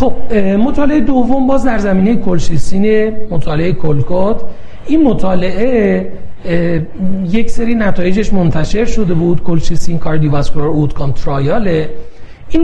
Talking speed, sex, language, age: 110 wpm, male, Persian, 40-59